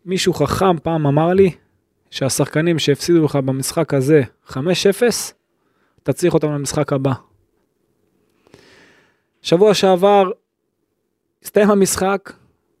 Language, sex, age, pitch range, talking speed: Hebrew, male, 20-39, 145-195 Hz, 90 wpm